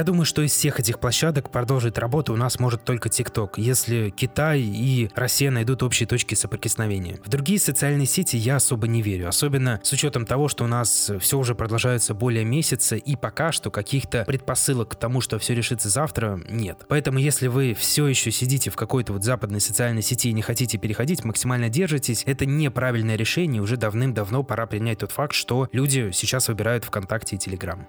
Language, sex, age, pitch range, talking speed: Russian, male, 20-39, 115-140 Hz, 190 wpm